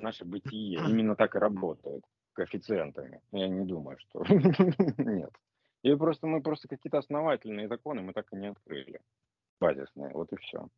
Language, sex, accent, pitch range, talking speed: Russian, male, native, 95-140 Hz, 155 wpm